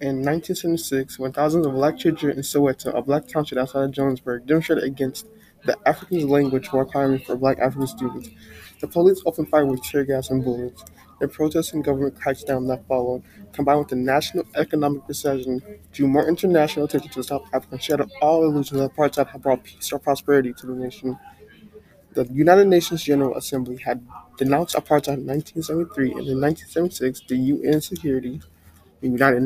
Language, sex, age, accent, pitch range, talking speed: English, male, 20-39, American, 130-150 Hz, 175 wpm